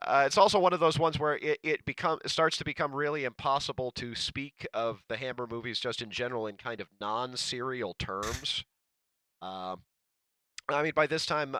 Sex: male